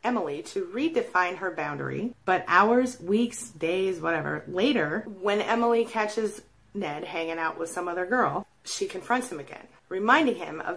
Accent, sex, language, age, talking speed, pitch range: American, female, English, 30-49, 155 wpm, 165-240 Hz